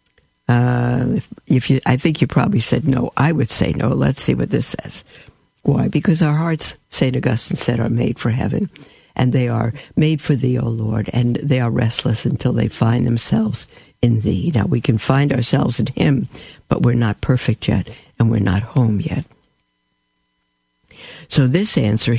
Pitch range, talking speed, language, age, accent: 120-145 Hz, 175 wpm, English, 60-79, American